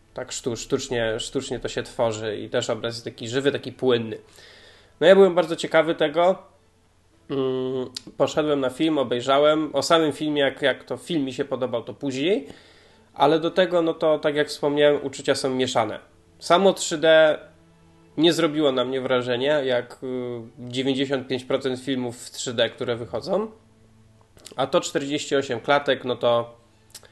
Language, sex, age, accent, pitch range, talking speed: Polish, male, 20-39, native, 120-150 Hz, 150 wpm